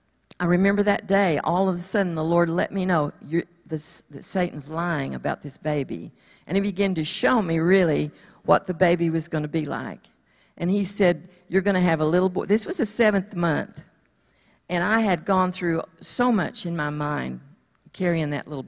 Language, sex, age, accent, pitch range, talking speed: English, female, 50-69, American, 165-200 Hz, 200 wpm